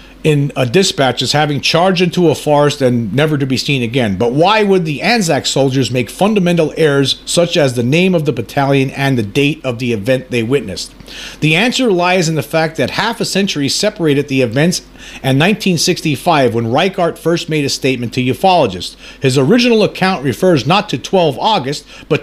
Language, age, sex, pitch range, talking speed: English, 50-69, male, 130-180 Hz, 190 wpm